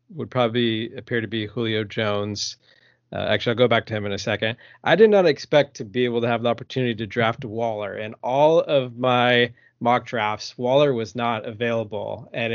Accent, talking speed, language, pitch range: American, 200 wpm, English, 110-130 Hz